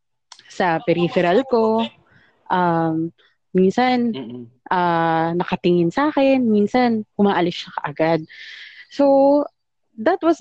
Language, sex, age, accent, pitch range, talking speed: English, female, 20-39, Filipino, 170-240 Hz, 90 wpm